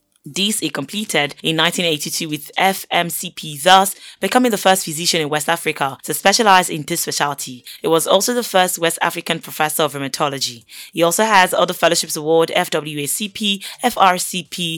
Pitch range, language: 150-190 Hz, English